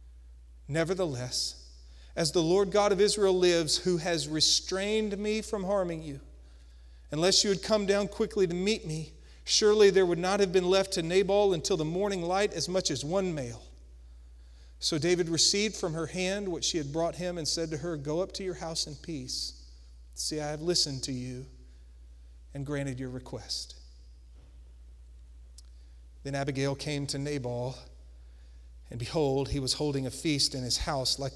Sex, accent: male, American